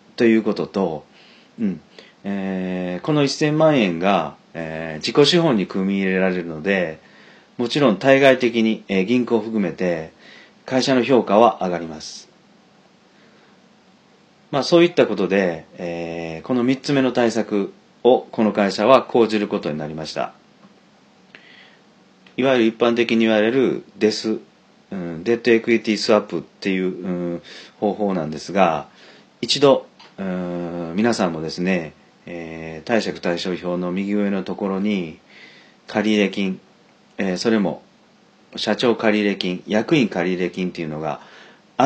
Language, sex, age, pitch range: Japanese, male, 40-59, 85-120 Hz